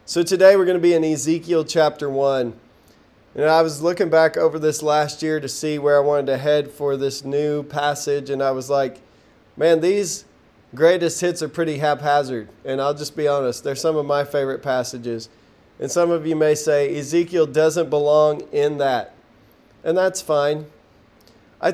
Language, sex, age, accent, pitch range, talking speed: English, male, 20-39, American, 130-160 Hz, 180 wpm